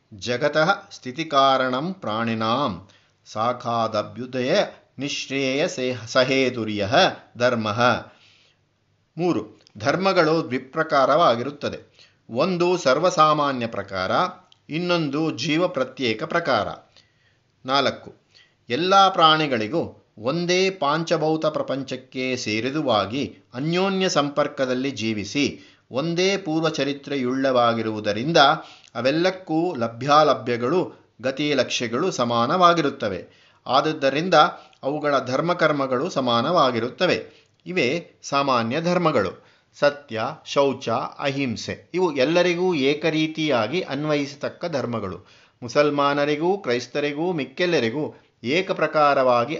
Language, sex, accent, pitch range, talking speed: Kannada, male, native, 120-160 Hz, 70 wpm